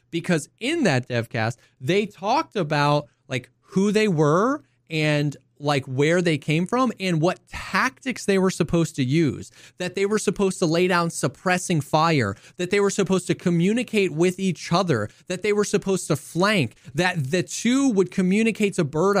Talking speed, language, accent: 175 wpm, English, American